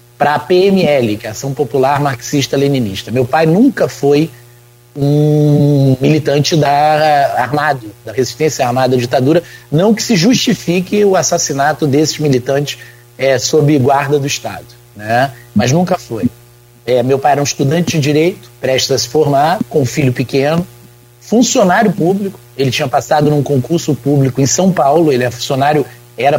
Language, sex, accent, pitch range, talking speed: Portuguese, male, Brazilian, 125-160 Hz, 160 wpm